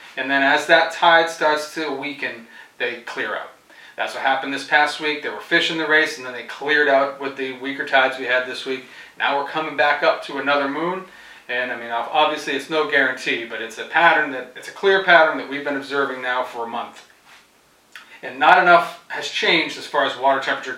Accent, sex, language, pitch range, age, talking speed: American, male, English, 135-170 Hz, 30-49, 220 wpm